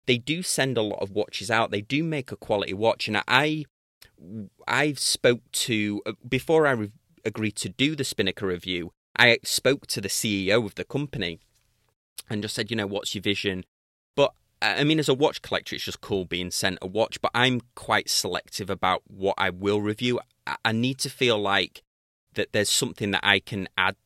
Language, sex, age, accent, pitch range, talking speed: English, male, 30-49, British, 95-115 Hz, 195 wpm